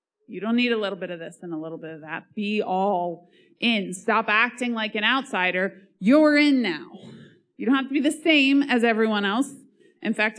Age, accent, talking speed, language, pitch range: 20-39, American, 215 wpm, English, 185-255 Hz